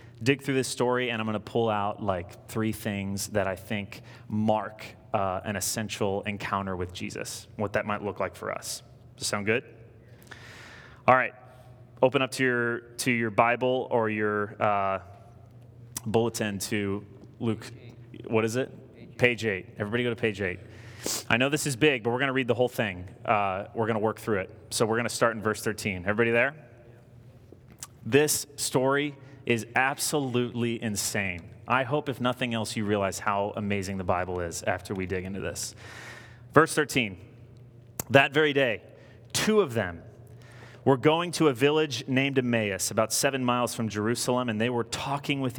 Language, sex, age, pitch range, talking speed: English, male, 20-39, 105-125 Hz, 180 wpm